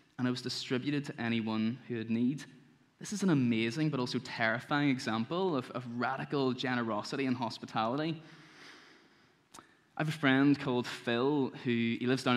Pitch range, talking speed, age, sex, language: 120-140 Hz, 160 wpm, 10-29, male, English